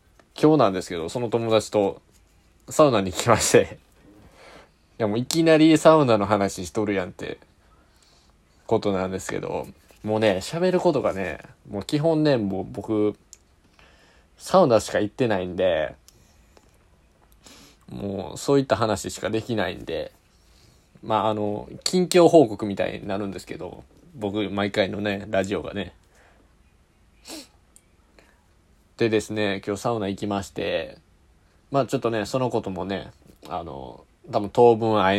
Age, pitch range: 20-39, 90-110 Hz